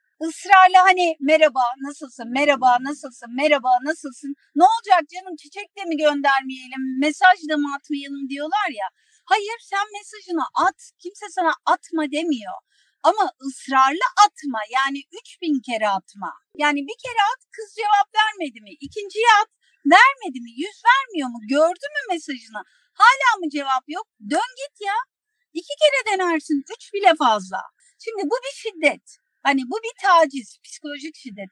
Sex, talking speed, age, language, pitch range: female, 145 wpm, 50-69, Turkish, 270-375 Hz